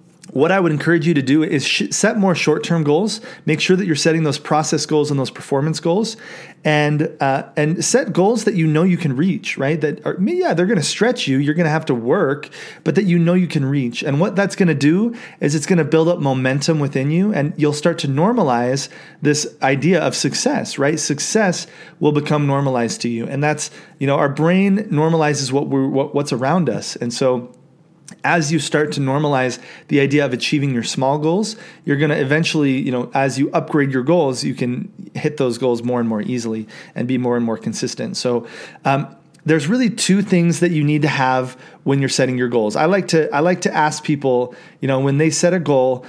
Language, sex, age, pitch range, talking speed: English, male, 30-49, 135-170 Hz, 225 wpm